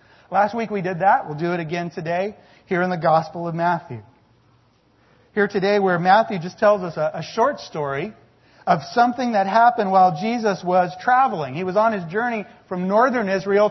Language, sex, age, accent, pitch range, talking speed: English, male, 40-59, American, 165-225 Hz, 190 wpm